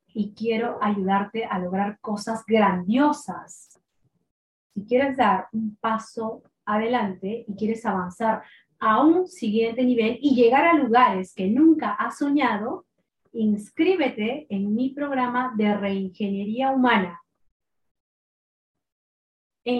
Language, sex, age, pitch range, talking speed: Spanish, female, 30-49, 200-255 Hz, 110 wpm